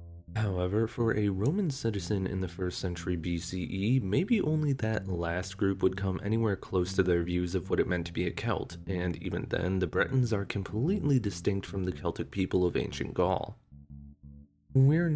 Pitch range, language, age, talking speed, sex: 95-115 Hz, English, 20-39, 180 wpm, male